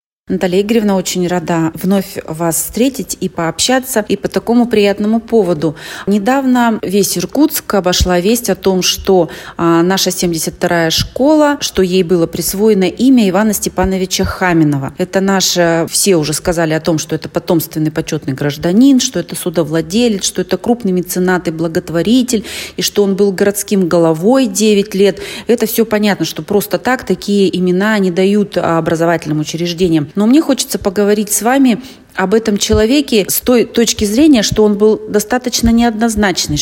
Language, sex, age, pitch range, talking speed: Russian, female, 30-49, 175-215 Hz, 150 wpm